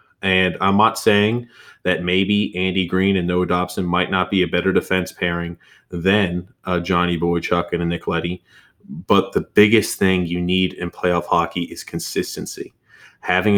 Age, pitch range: 30-49, 90-105 Hz